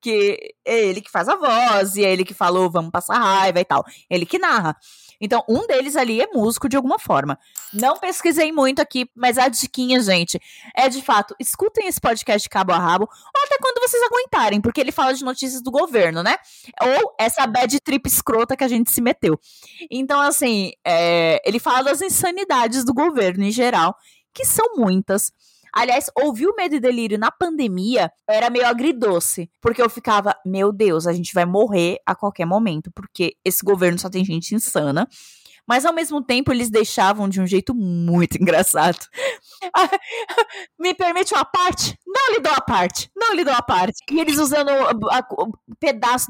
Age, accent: 20-39, Brazilian